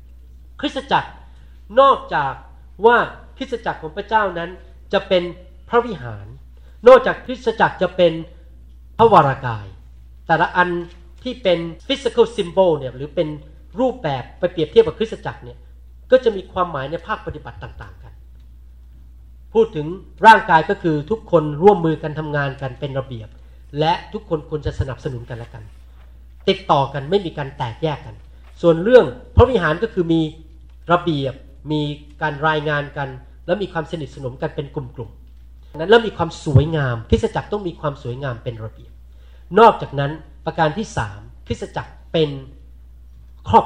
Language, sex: Thai, male